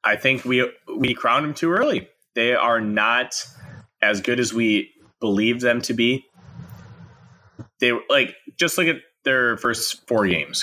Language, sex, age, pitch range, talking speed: English, male, 20-39, 105-140 Hz, 160 wpm